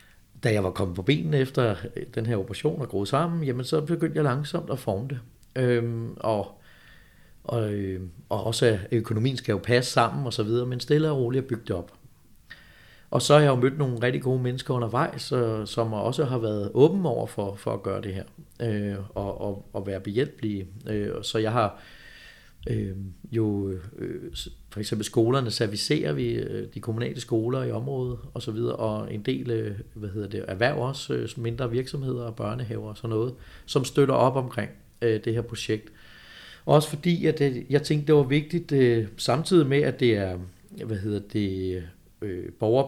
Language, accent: Danish, native